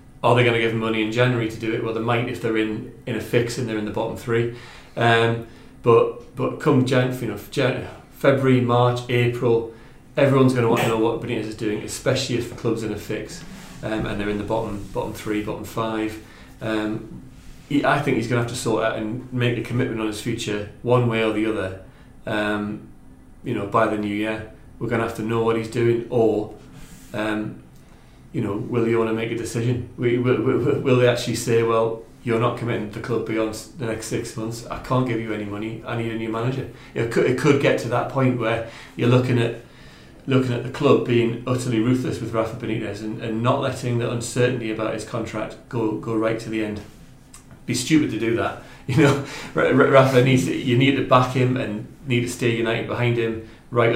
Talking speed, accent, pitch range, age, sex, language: 225 wpm, British, 110-120 Hz, 30-49, male, English